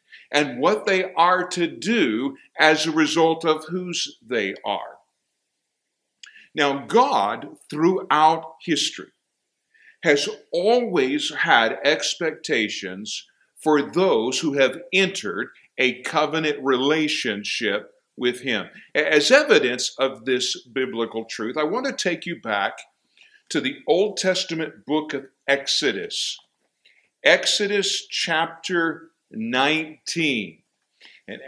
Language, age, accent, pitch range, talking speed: English, 50-69, American, 135-185 Hz, 105 wpm